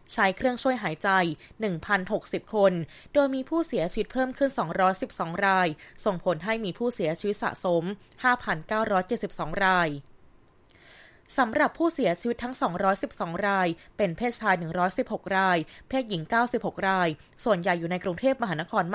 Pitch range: 180-215 Hz